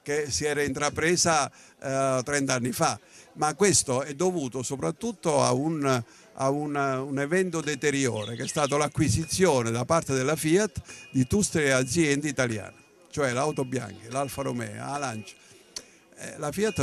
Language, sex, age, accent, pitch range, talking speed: Italian, male, 50-69, native, 130-170 Hz, 145 wpm